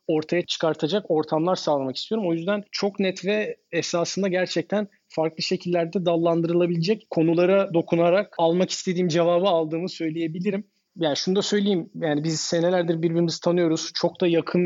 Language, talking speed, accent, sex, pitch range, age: Turkish, 140 wpm, native, male, 160-185 Hz, 40-59